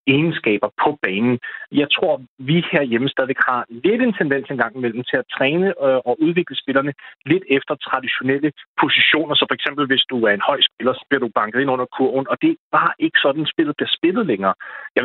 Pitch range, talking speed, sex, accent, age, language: 120-150 Hz, 210 wpm, male, native, 30-49, Danish